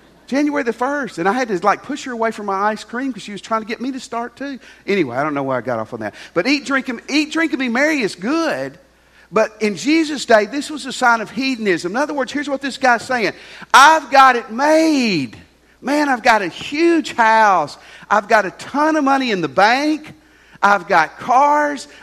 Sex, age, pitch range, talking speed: male, 50-69, 175-260 Hz, 235 wpm